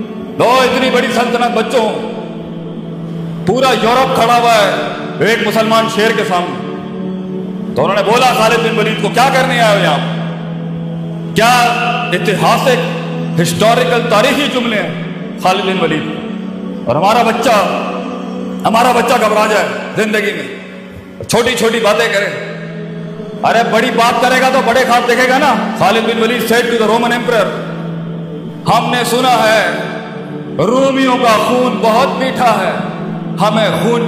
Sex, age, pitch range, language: male, 50-69, 185-230 Hz, Urdu